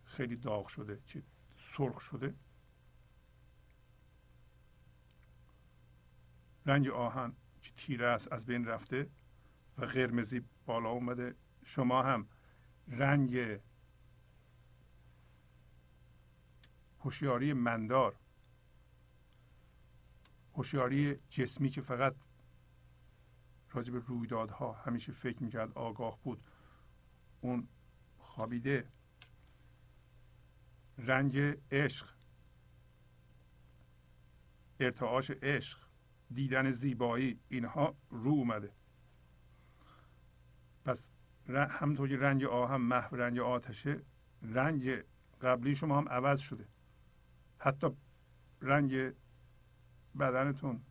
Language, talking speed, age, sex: Persian, 75 wpm, 60-79, male